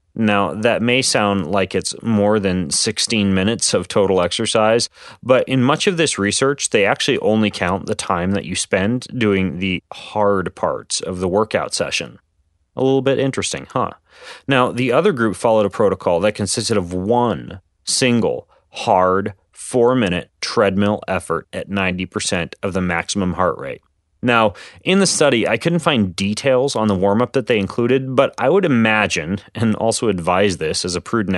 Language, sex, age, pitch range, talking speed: English, male, 30-49, 95-120 Hz, 170 wpm